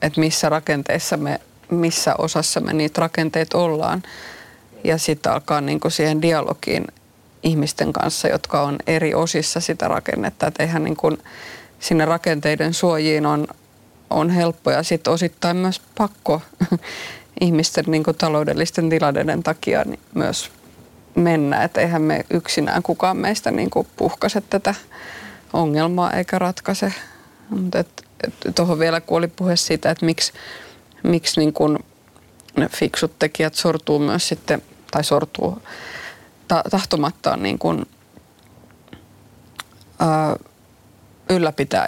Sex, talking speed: female, 110 wpm